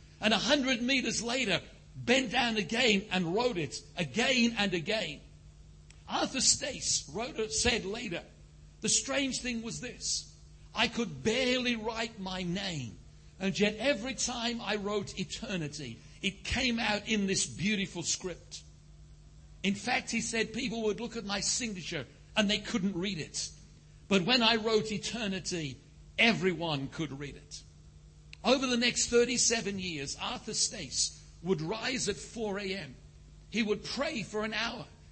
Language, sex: English, male